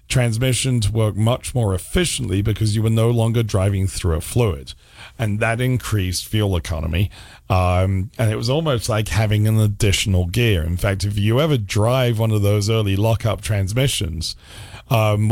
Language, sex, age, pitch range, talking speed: English, male, 40-59, 95-120 Hz, 170 wpm